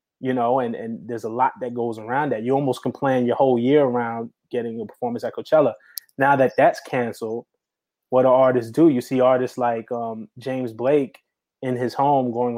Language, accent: English, American